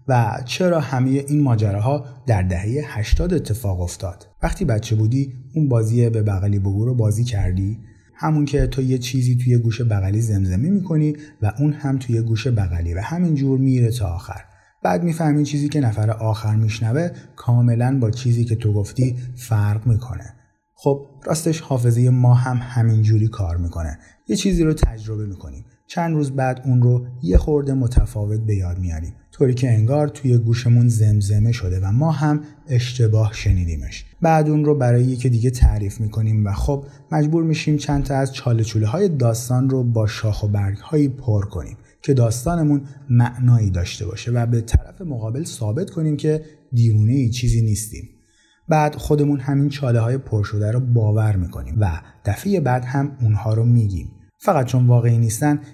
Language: Persian